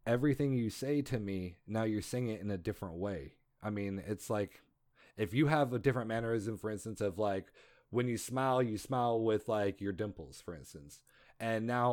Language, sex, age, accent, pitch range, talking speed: English, male, 30-49, American, 100-120 Hz, 200 wpm